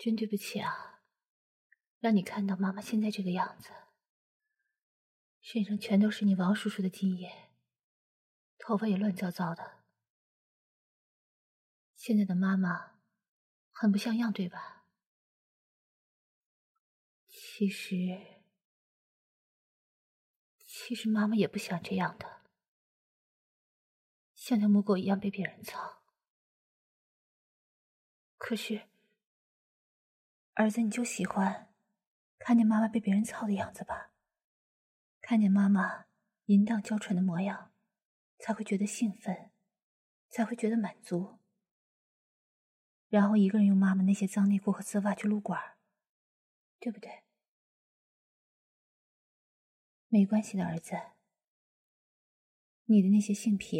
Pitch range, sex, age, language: 195-220 Hz, female, 30-49, English